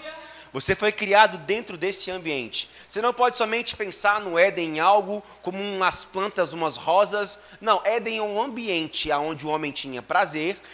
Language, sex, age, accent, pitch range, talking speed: Portuguese, male, 20-39, Brazilian, 170-220 Hz, 170 wpm